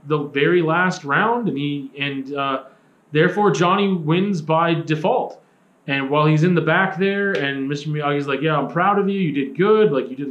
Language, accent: English, American